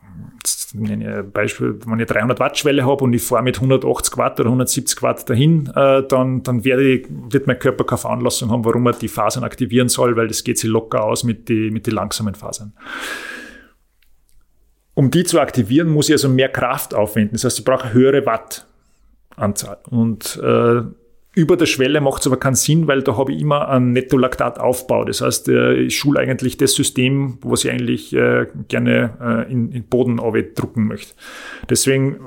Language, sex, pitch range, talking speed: German, male, 115-140 Hz, 180 wpm